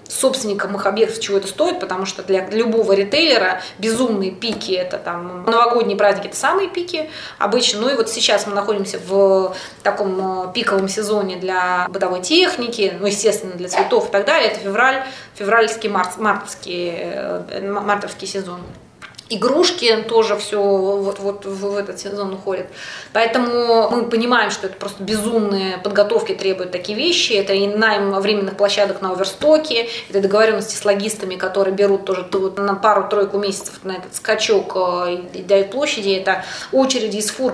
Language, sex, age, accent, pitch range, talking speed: Russian, female, 20-39, native, 195-225 Hz, 150 wpm